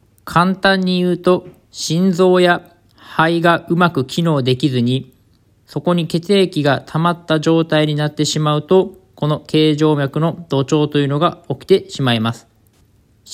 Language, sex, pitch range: Japanese, male, 135-170 Hz